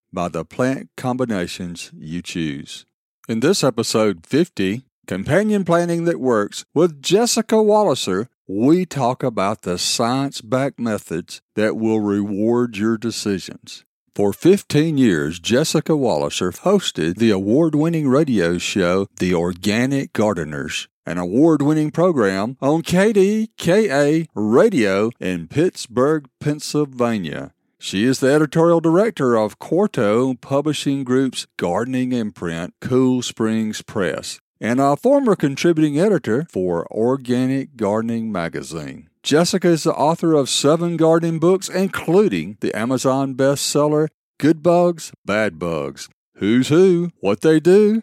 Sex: male